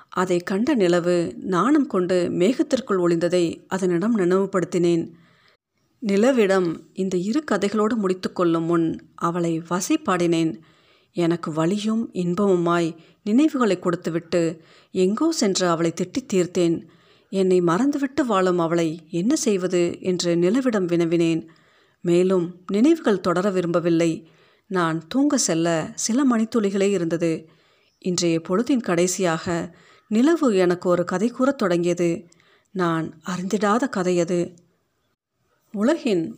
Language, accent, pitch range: Tamil, native, 170-210 Hz